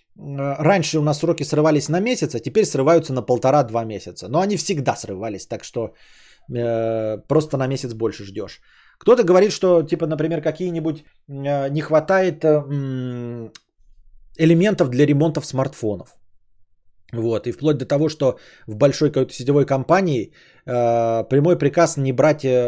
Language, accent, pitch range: Russian, native, 125-160 Hz